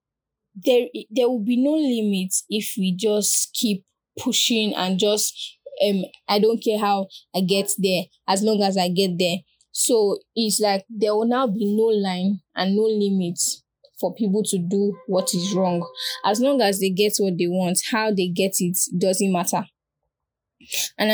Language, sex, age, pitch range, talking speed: English, female, 10-29, 185-215 Hz, 175 wpm